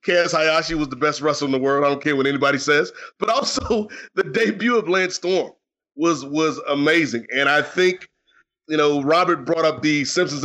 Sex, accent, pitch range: male, American, 145-175 Hz